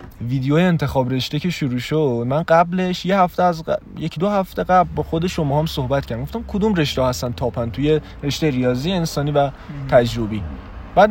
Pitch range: 125-175 Hz